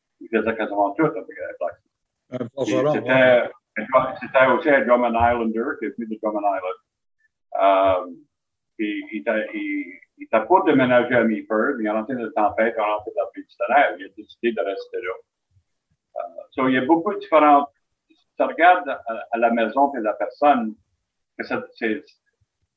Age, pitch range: 50-69, 110-160 Hz